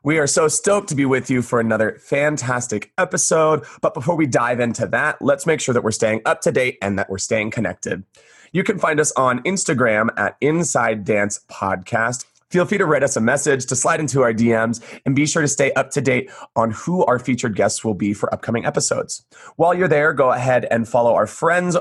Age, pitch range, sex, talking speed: 30-49, 110-150 Hz, male, 215 wpm